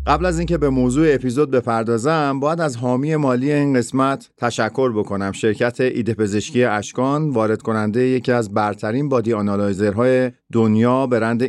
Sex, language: male, Persian